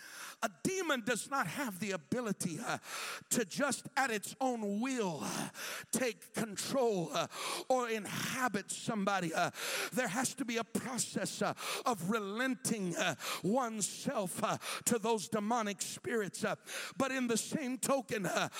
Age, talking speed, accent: 60-79, 145 wpm, American